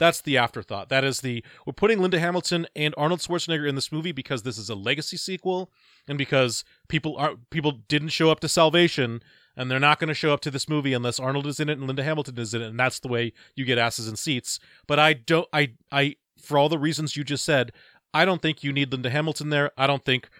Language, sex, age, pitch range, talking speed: English, male, 30-49, 125-155 Hz, 250 wpm